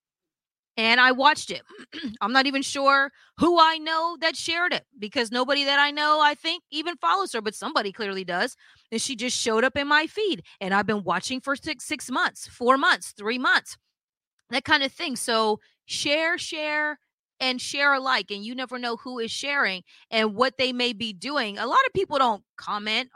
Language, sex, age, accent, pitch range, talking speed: English, female, 30-49, American, 205-280 Hz, 200 wpm